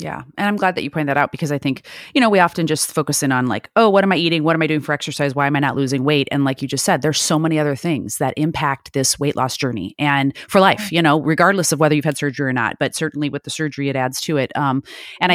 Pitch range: 155-225 Hz